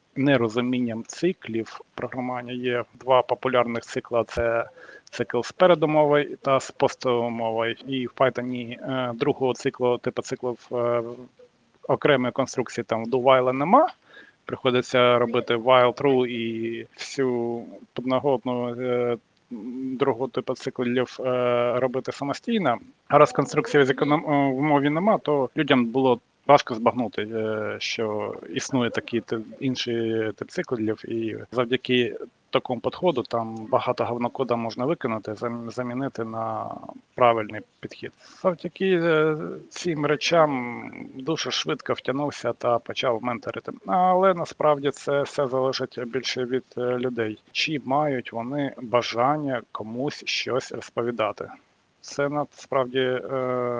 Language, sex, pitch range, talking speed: Ukrainian, male, 120-140 Hz, 105 wpm